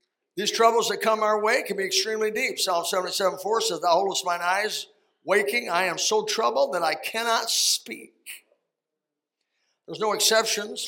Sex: male